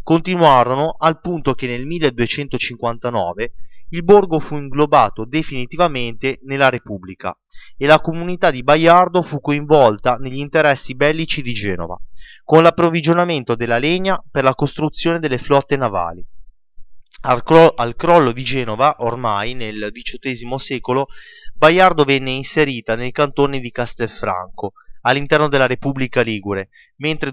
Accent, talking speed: native, 125 wpm